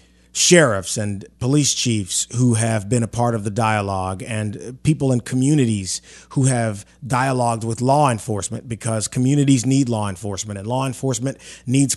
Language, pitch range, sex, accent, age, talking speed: English, 100-140 Hz, male, American, 30-49, 155 wpm